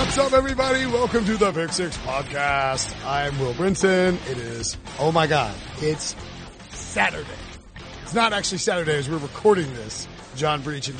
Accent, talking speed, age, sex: American, 165 wpm, 30-49, male